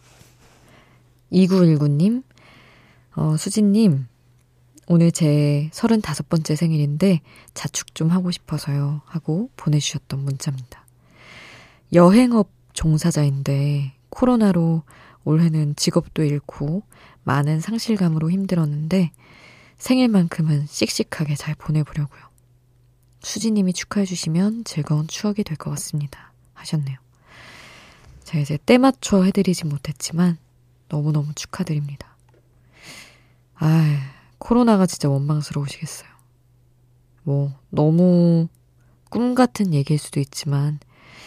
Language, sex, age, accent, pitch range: Korean, female, 20-39, native, 130-175 Hz